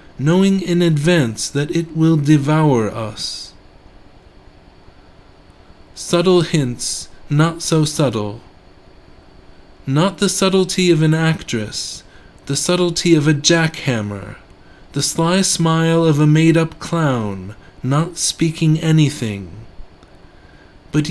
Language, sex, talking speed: English, male, 100 wpm